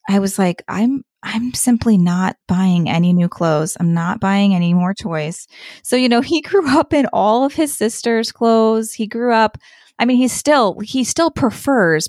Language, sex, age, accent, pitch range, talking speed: English, female, 20-39, American, 185-245 Hz, 195 wpm